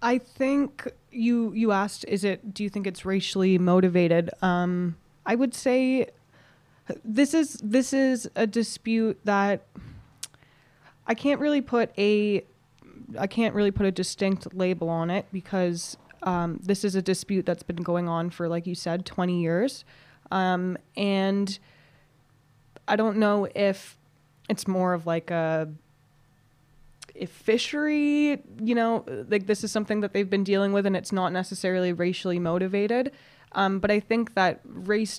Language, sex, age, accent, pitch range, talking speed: English, female, 20-39, American, 165-205 Hz, 150 wpm